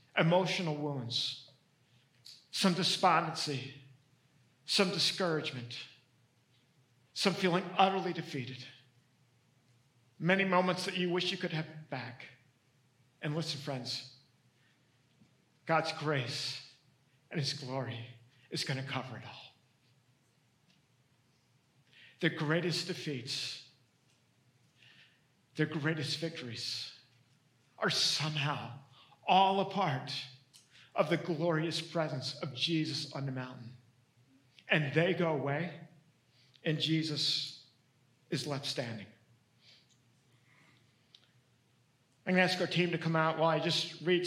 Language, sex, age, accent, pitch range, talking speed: English, male, 50-69, American, 130-165 Hz, 100 wpm